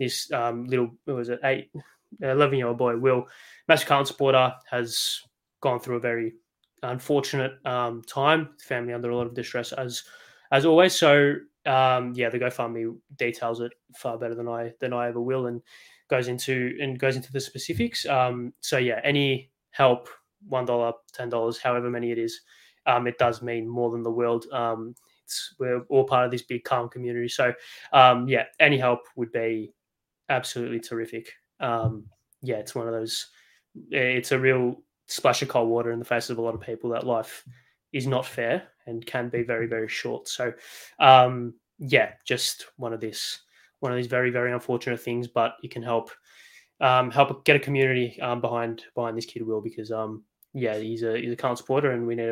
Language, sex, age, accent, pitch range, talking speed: English, male, 20-39, Australian, 115-130 Hz, 190 wpm